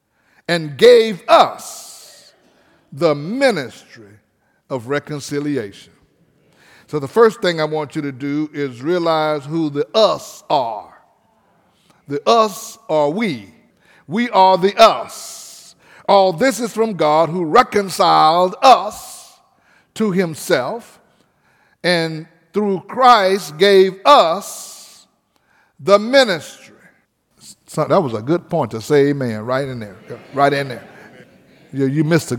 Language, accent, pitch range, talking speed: English, American, 140-220 Hz, 115 wpm